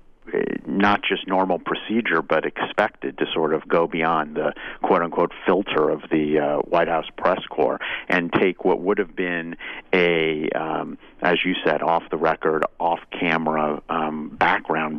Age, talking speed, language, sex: 50-69, 140 wpm, English, male